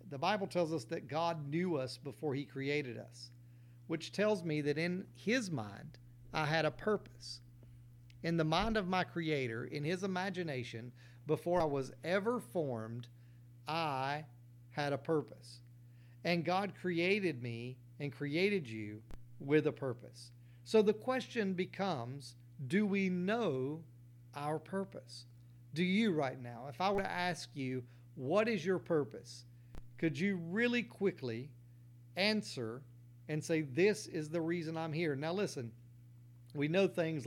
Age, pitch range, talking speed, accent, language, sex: 50-69, 120-170 Hz, 150 wpm, American, English, male